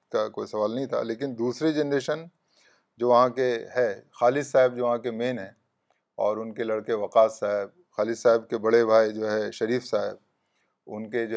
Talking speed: 195 wpm